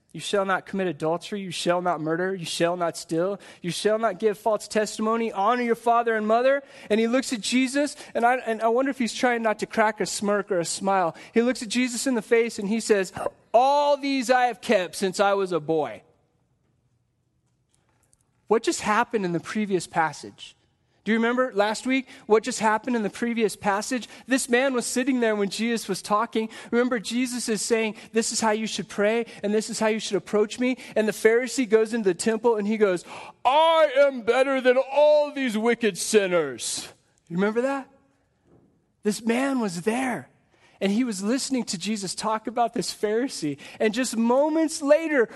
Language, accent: English, American